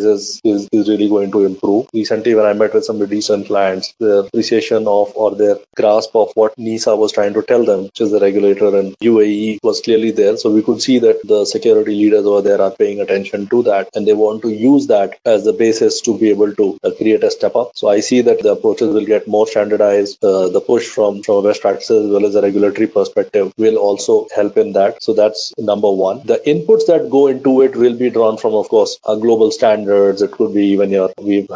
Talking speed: 235 wpm